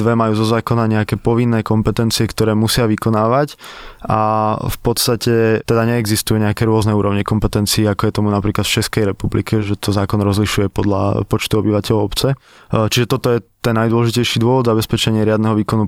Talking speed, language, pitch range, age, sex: 165 wpm, Slovak, 105-115 Hz, 20-39, male